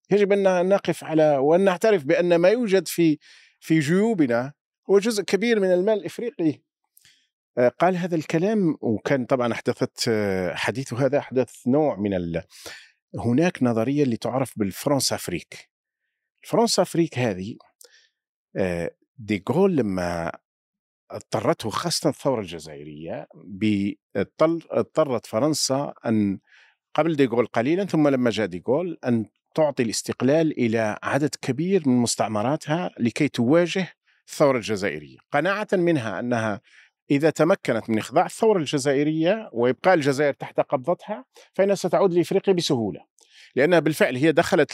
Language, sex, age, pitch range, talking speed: Arabic, male, 50-69, 115-175 Hz, 115 wpm